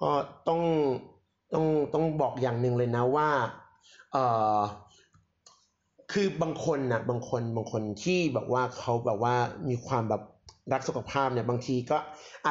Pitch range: 120-155 Hz